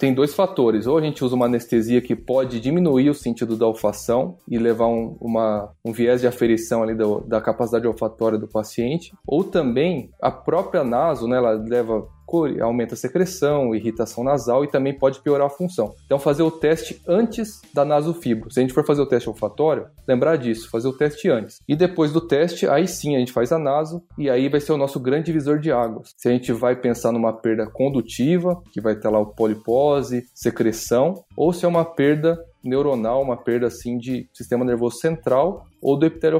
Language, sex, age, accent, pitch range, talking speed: Portuguese, male, 20-39, Brazilian, 115-155 Hz, 200 wpm